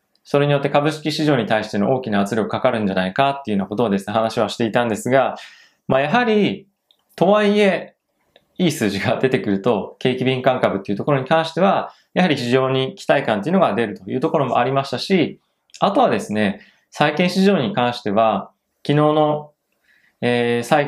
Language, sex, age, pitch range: Japanese, male, 20-39, 115-150 Hz